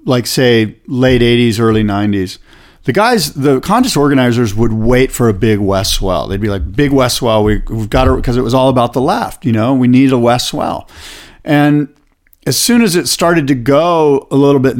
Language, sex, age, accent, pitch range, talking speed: English, male, 40-59, American, 115-145 Hz, 210 wpm